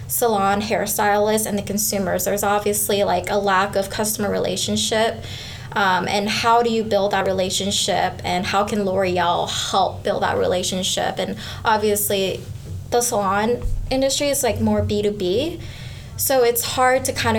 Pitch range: 185-215 Hz